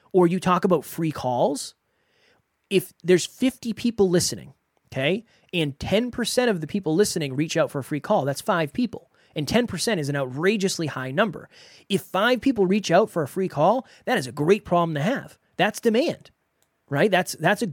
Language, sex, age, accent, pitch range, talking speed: English, male, 30-49, American, 150-200 Hz, 190 wpm